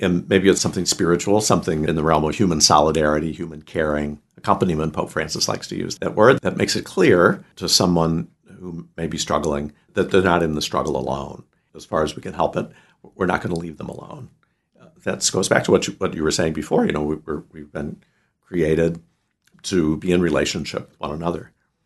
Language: English